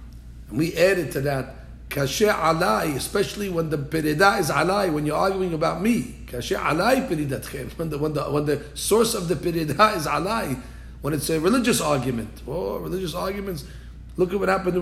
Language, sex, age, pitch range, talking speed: English, male, 40-59, 110-175 Hz, 150 wpm